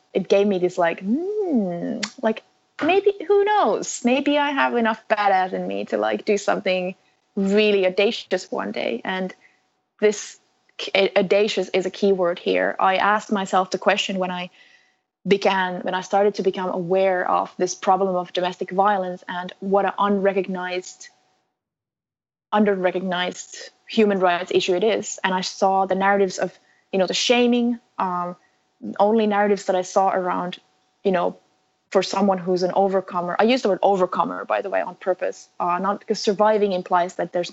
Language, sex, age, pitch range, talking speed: English, female, 20-39, 180-205 Hz, 170 wpm